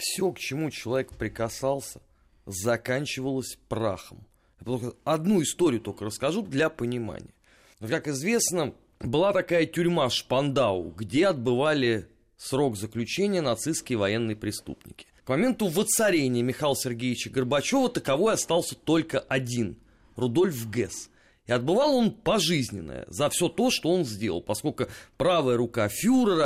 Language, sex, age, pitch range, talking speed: Russian, male, 30-49, 115-175 Hz, 120 wpm